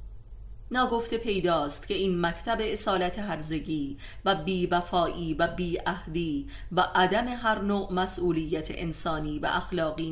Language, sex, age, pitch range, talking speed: Persian, female, 30-49, 160-195 Hz, 125 wpm